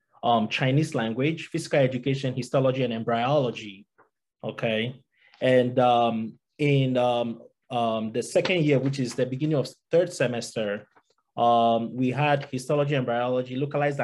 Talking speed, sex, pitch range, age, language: 135 wpm, male, 125-145 Hz, 20-39, English